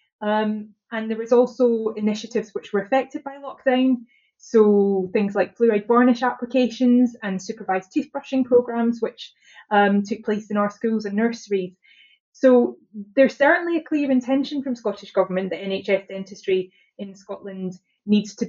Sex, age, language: female, 20-39, English